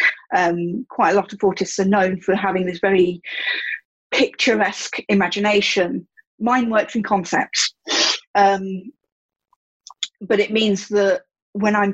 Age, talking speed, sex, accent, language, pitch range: 40-59, 125 wpm, female, British, English, 195-240 Hz